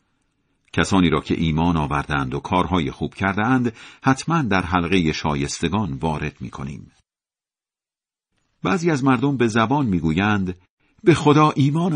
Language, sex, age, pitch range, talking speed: Persian, male, 50-69, 85-130 Hz, 130 wpm